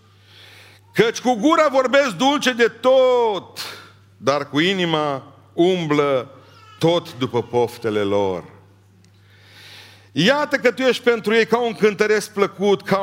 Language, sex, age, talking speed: Romanian, male, 50-69, 120 wpm